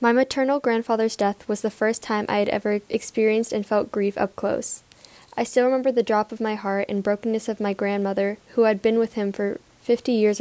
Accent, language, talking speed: American, English, 220 wpm